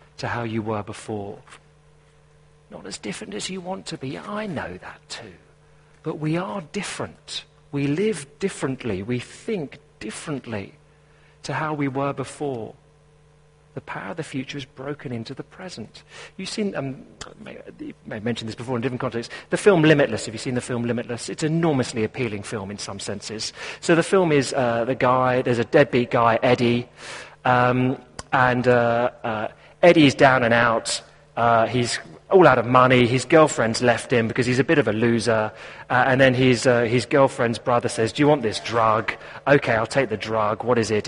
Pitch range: 115-150 Hz